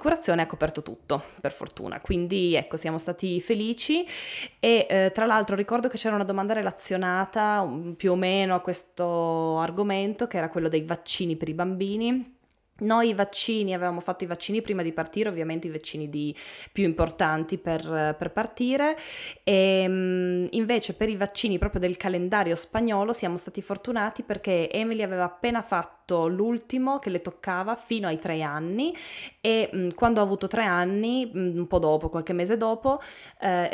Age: 20-39